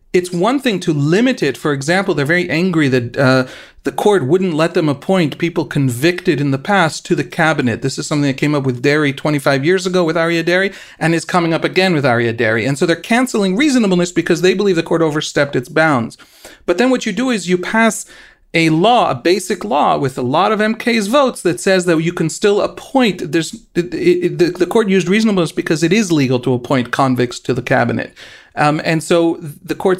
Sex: male